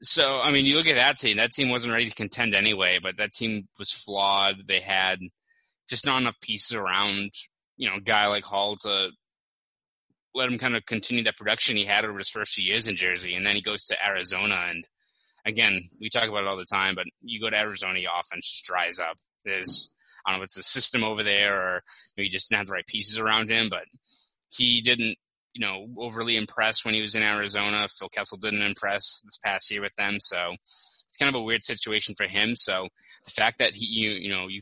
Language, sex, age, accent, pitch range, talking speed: English, male, 20-39, American, 95-115 Hz, 230 wpm